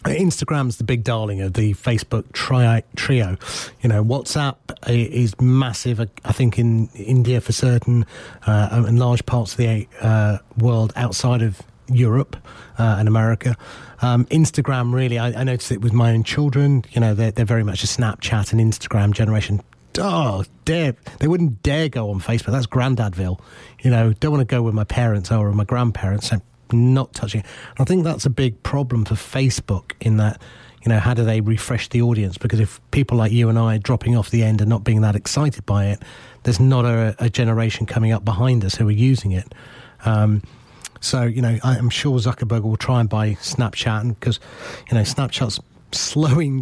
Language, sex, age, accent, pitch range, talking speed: English, male, 30-49, British, 110-125 Hz, 185 wpm